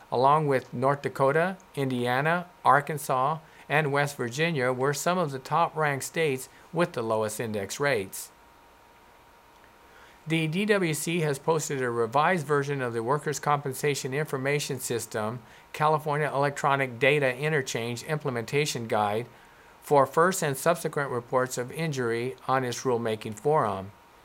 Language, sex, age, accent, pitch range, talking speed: English, male, 50-69, American, 125-155 Hz, 125 wpm